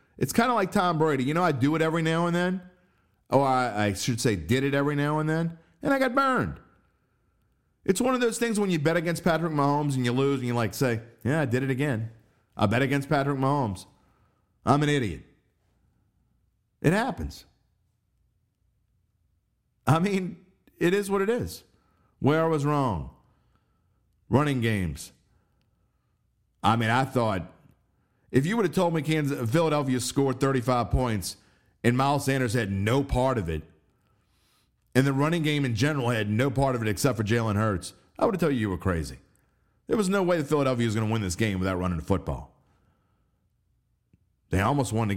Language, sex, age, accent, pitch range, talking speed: English, male, 50-69, American, 100-145 Hz, 185 wpm